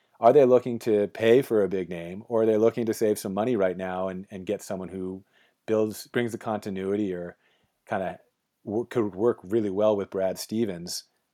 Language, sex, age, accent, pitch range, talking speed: English, male, 30-49, American, 95-110 Hz, 200 wpm